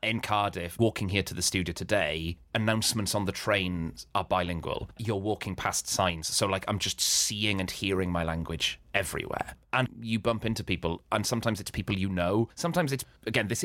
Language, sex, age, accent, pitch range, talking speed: English, male, 30-49, British, 85-110 Hz, 190 wpm